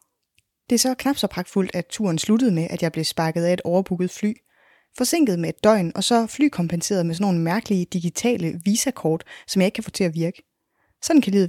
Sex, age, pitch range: female, 20-39, 170-220 Hz